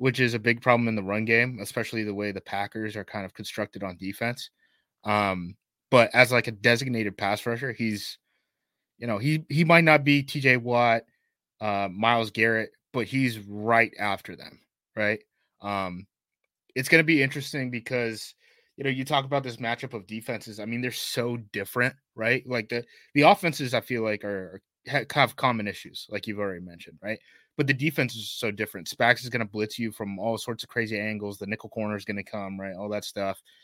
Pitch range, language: 105-125 Hz, English